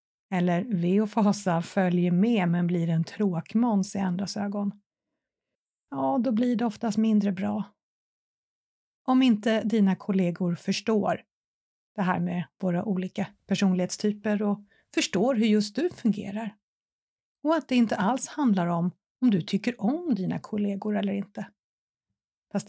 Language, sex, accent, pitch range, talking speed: Swedish, female, native, 185-230 Hz, 140 wpm